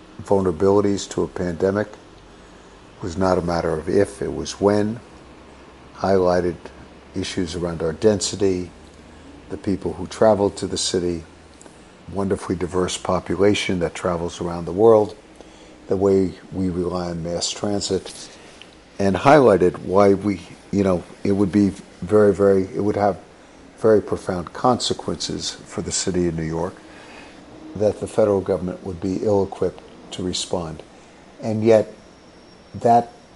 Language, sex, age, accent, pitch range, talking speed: English, male, 60-79, American, 90-105 Hz, 135 wpm